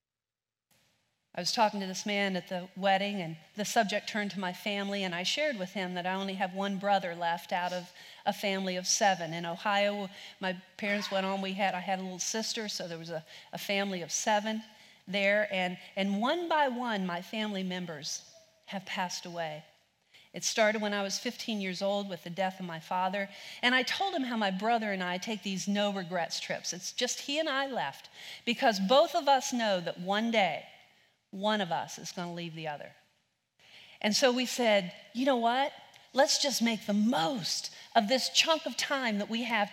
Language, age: English, 50-69